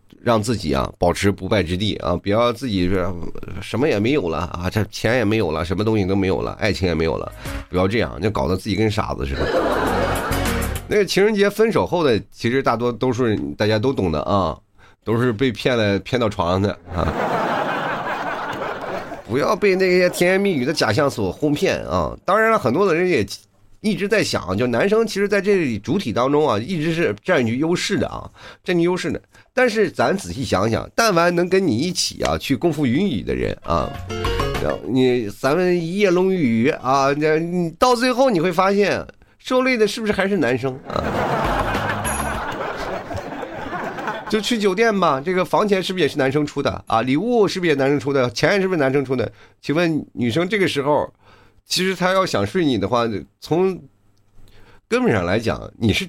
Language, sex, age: Chinese, male, 30-49